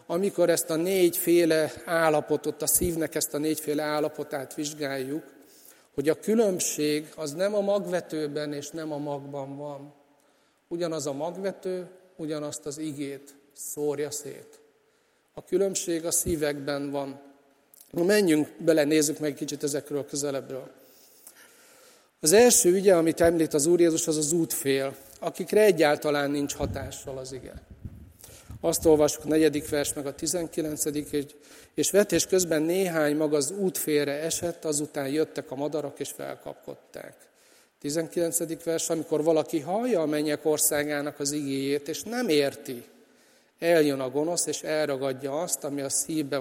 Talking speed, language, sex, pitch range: 140 wpm, Hungarian, male, 145-170 Hz